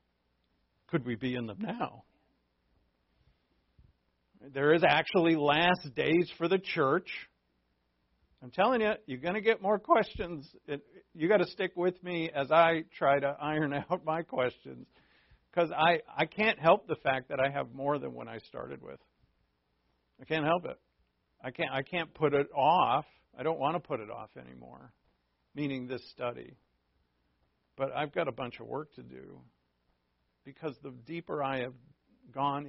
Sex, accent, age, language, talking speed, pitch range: male, American, 50-69, English, 165 wpm, 125-180 Hz